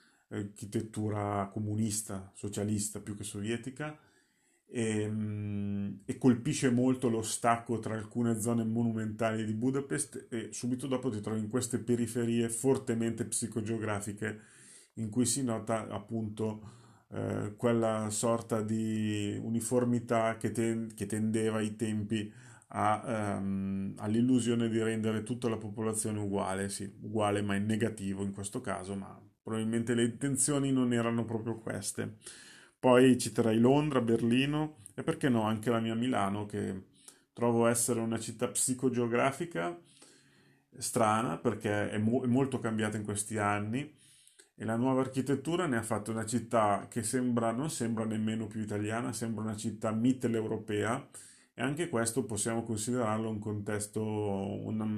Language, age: Italian, 30-49